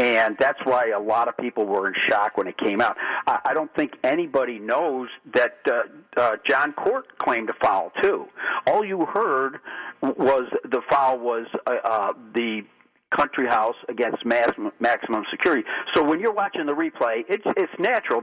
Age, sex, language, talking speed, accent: 50-69, male, English, 180 wpm, American